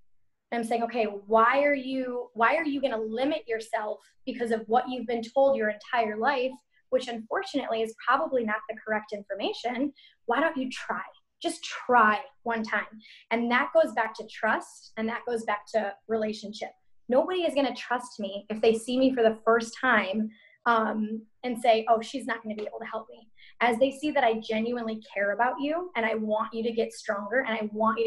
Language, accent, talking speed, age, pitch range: English, American, 205 wpm, 10-29, 220-260 Hz